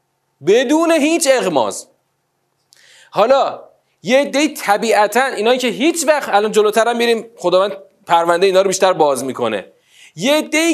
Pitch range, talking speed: 180-260 Hz, 130 wpm